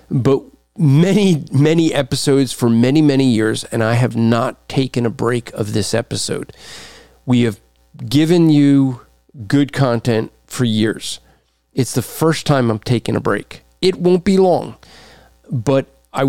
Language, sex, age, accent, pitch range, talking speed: English, male, 40-59, American, 105-145 Hz, 145 wpm